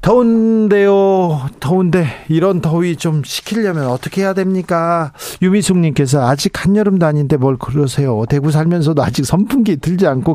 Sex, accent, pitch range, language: male, native, 130-185 Hz, Korean